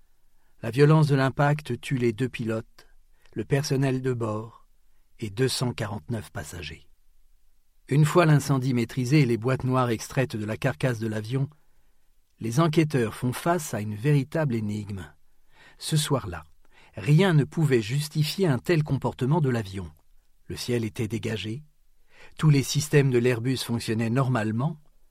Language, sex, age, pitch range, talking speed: French, male, 50-69, 110-145 Hz, 140 wpm